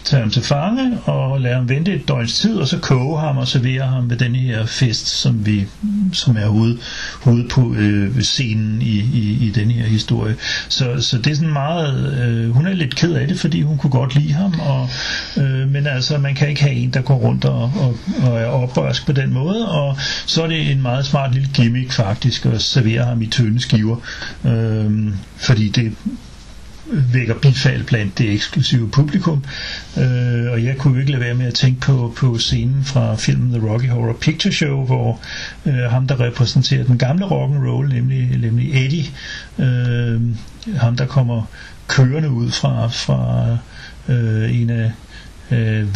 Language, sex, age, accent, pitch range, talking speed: Danish, male, 60-79, native, 115-140 Hz, 185 wpm